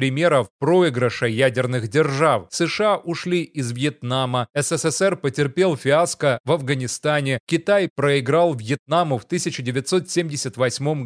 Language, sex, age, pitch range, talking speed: Russian, male, 30-49, 130-165 Hz, 100 wpm